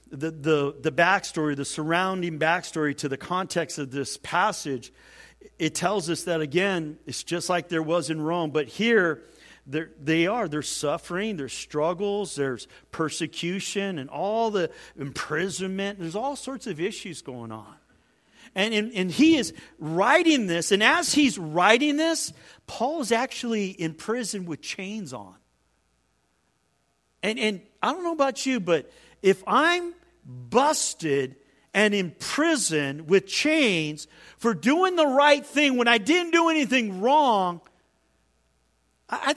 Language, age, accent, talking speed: English, 50-69, American, 145 wpm